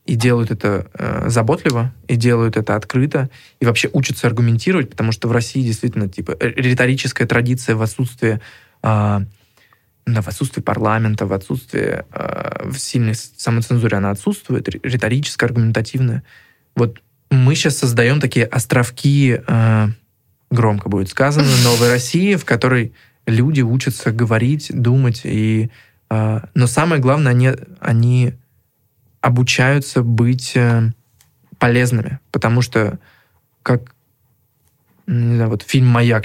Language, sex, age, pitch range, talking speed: Russian, male, 20-39, 115-130 Hz, 120 wpm